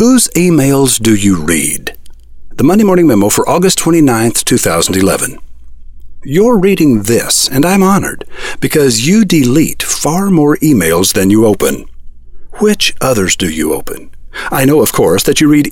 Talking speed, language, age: 155 wpm, English, 50-69